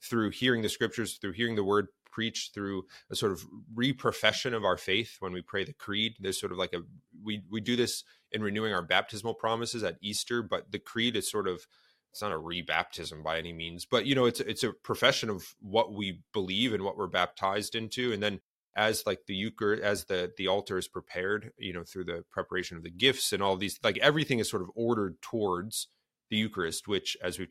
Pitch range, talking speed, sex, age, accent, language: 95-115 Hz, 225 wpm, male, 30-49, American, English